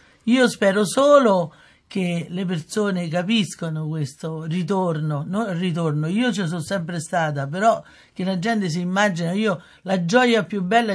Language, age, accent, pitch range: Italian, 60-79, native, 170-205 Hz